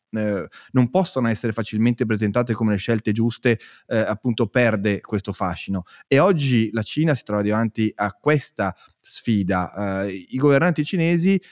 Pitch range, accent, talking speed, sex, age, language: 110-135 Hz, native, 135 wpm, male, 20-39, Italian